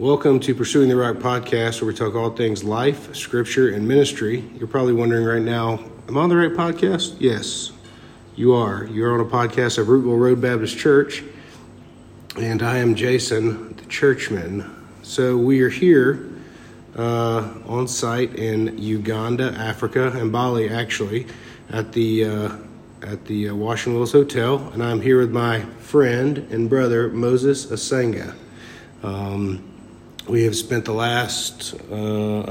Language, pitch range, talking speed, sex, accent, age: English, 110-125 Hz, 155 wpm, male, American, 50-69